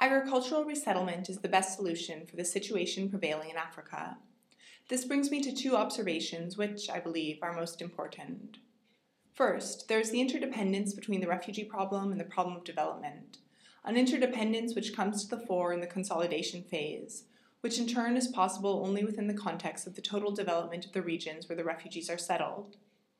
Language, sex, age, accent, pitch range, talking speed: English, female, 20-39, American, 175-225 Hz, 180 wpm